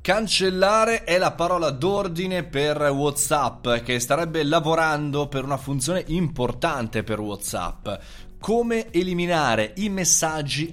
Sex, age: male, 20-39